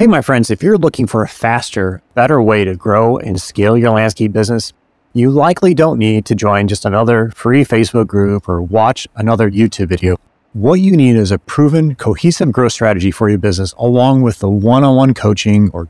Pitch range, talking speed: 105-140 Hz, 205 wpm